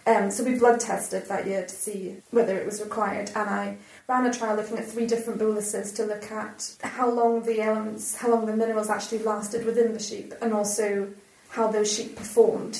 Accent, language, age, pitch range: British, English, 30-49, 200-225 Hz